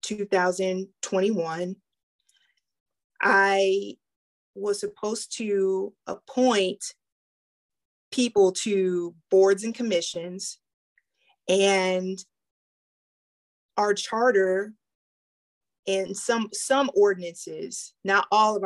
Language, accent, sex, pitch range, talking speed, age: English, American, female, 180-220 Hz, 70 wpm, 20-39